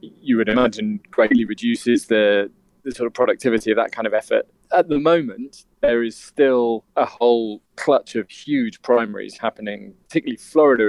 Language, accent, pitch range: English, British, 110-125 Hz